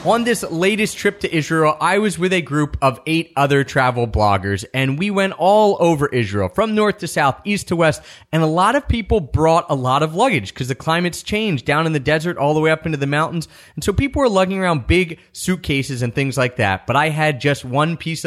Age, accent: 30-49, American